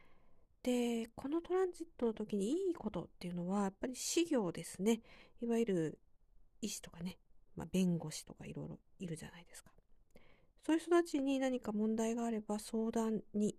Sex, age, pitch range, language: female, 50-69, 190-250 Hz, Japanese